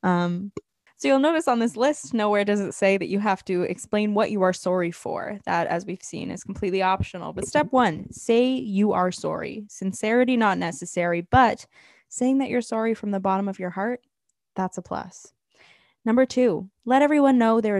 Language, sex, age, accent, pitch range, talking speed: English, female, 10-29, American, 185-240 Hz, 195 wpm